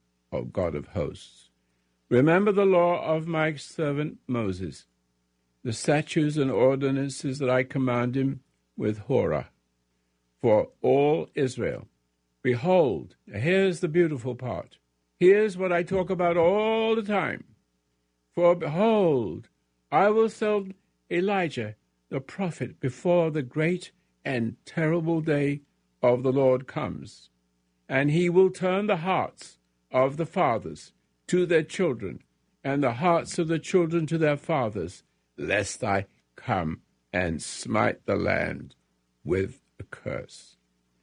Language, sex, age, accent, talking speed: English, male, 60-79, American, 125 wpm